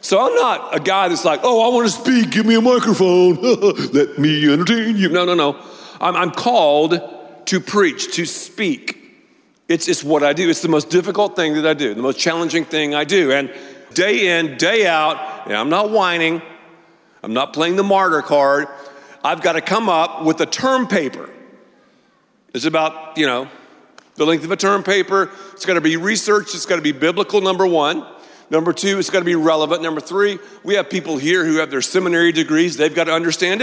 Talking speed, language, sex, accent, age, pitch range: 210 wpm, English, male, American, 50-69, 155-195 Hz